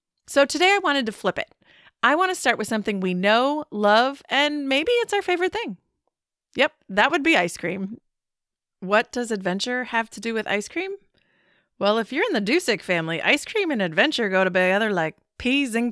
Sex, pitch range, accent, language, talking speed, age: female, 190-285 Hz, American, English, 195 wpm, 30-49